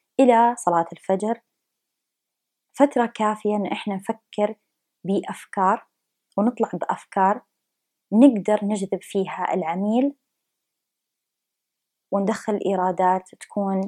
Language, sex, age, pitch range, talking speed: English, female, 20-39, 185-225 Hz, 80 wpm